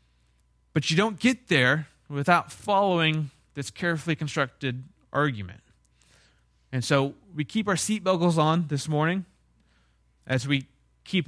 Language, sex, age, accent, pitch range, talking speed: English, male, 30-49, American, 115-165 Hz, 120 wpm